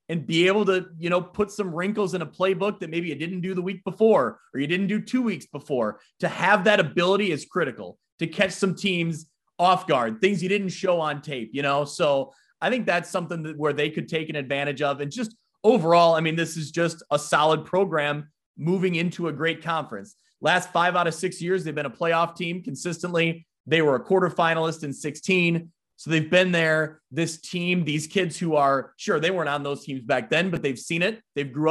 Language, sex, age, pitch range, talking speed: English, male, 30-49, 150-180 Hz, 220 wpm